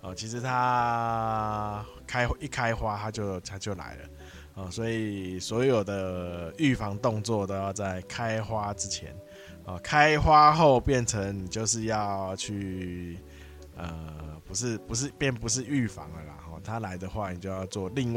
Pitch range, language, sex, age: 90-120 Hz, Chinese, male, 20-39